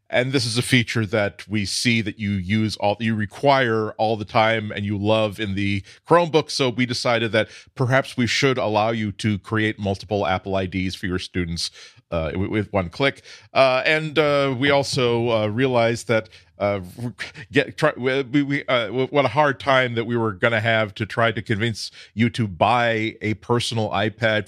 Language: English